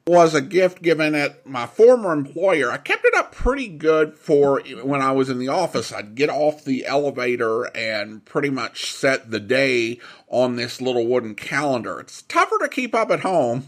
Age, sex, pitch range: 50-69, male, 135-200 Hz